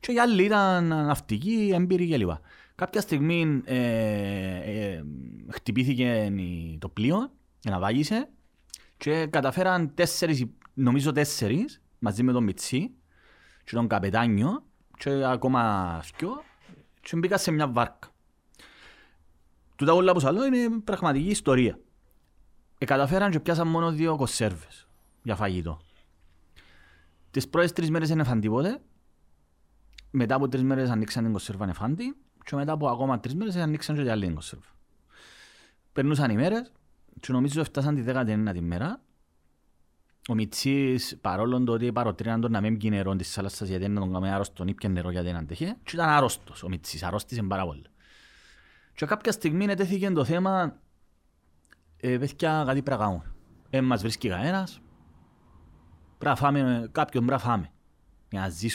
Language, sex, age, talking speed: Greek, male, 30-49, 110 wpm